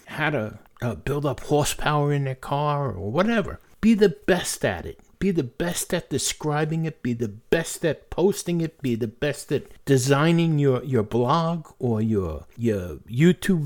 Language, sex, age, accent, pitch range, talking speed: English, male, 60-79, American, 130-200 Hz, 175 wpm